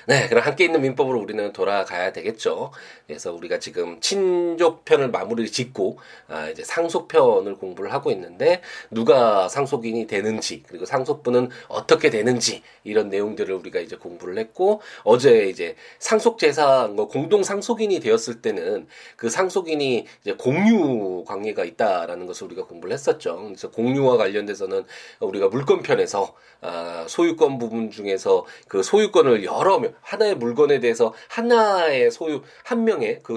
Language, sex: Korean, male